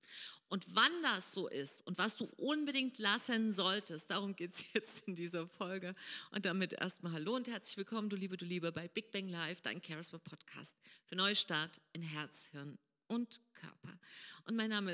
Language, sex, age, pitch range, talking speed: German, female, 40-59, 175-225 Hz, 180 wpm